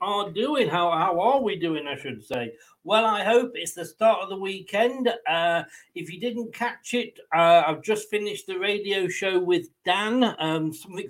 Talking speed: 195 wpm